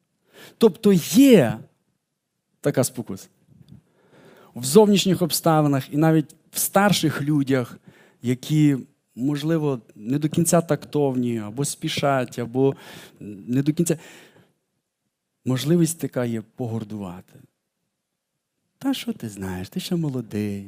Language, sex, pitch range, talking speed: Ukrainian, male, 120-170 Hz, 100 wpm